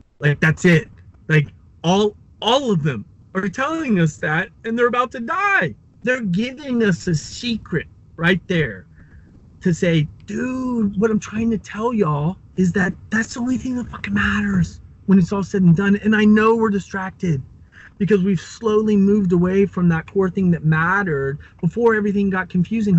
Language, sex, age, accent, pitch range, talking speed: English, male, 30-49, American, 150-200 Hz, 175 wpm